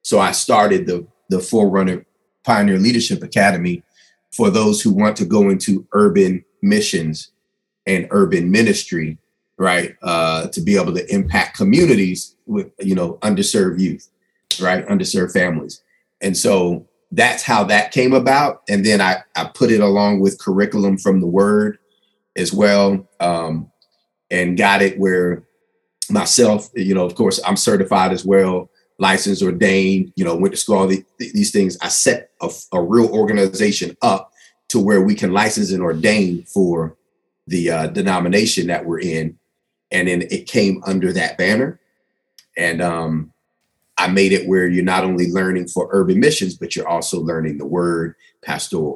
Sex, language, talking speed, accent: male, English, 160 wpm, American